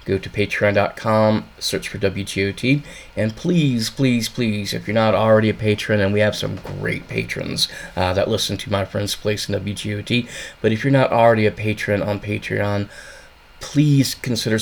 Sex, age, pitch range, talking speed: male, 20-39, 105-115 Hz, 170 wpm